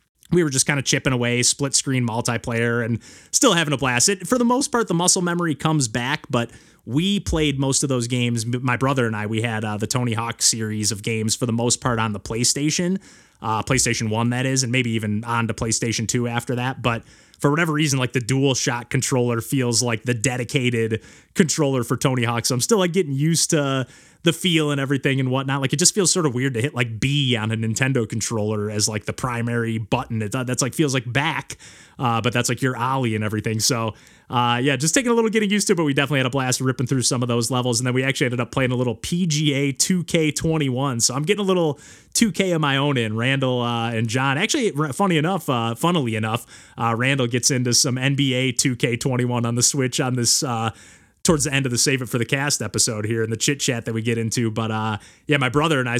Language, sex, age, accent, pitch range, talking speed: English, male, 20-39, American, 115-145 Hz, 235 wpm